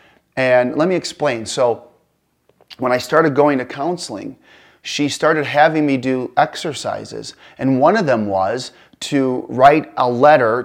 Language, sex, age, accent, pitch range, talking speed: English, male, 30-49, American, 115-140 Hz, 145 wpm